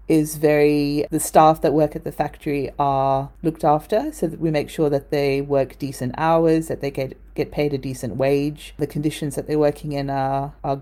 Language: English